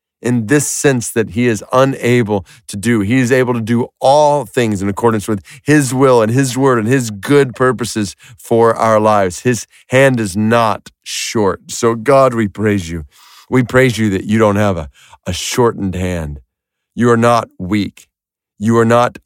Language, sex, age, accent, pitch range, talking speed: English, male, 40-59, American, 95-120 Hz, 185 wpm